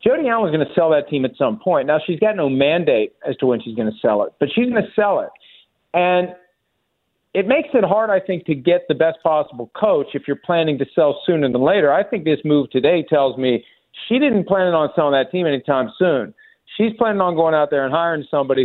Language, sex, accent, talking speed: English, male, American, 240 wpm